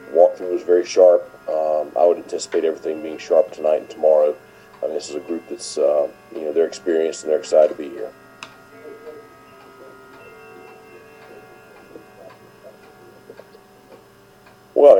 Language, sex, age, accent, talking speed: English, male, 40-59, American, 130 wpm